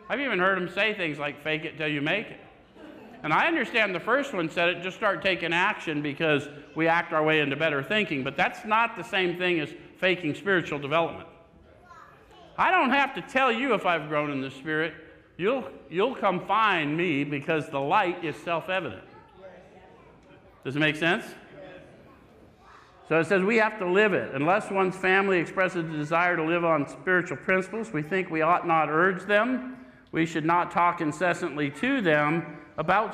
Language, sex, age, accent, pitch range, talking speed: English, male, 50-69, American, 150-180 Hz, 185 wpm